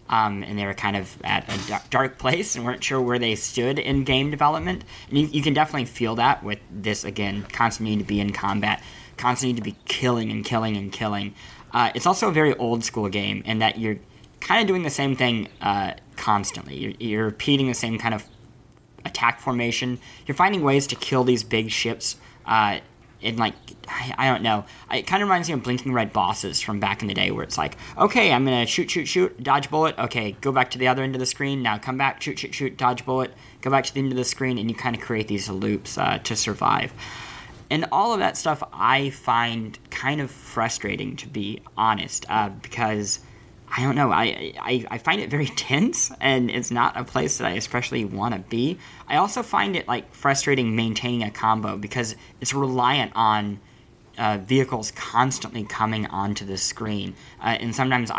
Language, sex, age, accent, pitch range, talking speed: English, male, 20-39, American, 105-130 Hz, 210 wpm